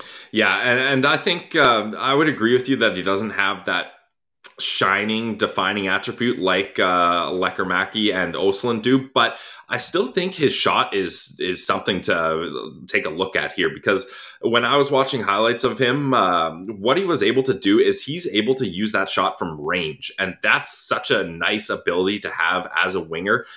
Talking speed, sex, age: 195 wpm, male, 20-39